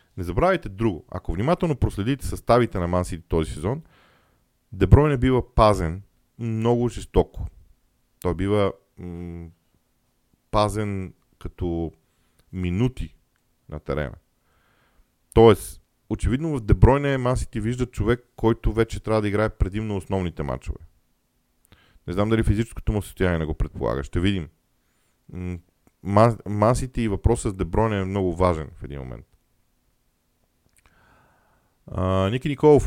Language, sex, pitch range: Bulgarian, male, 90-120 Hz